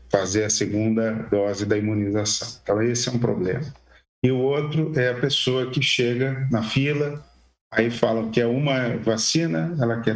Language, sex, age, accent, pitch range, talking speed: Portuguese, male, 50-69, Brazilian, 110-130 Hz, 170 wpm